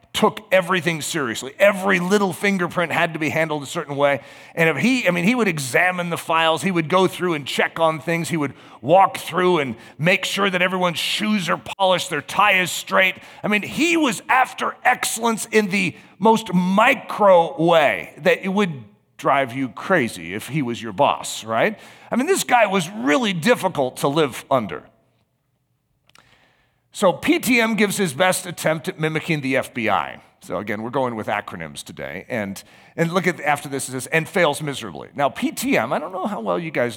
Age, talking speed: 40-59, 190 wpm